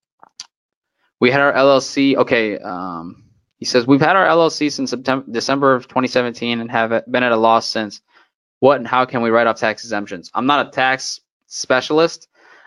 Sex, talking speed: male, 180 wpm